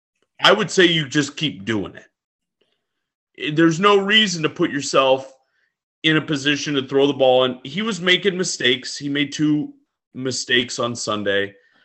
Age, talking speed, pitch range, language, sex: 30-49, 160 wpm, 120-155 Hz, English, male